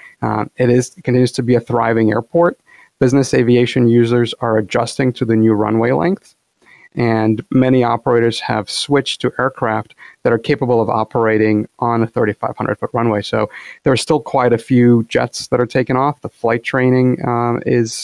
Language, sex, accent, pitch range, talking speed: English, male, American, 110-130 Hz, 175 wpm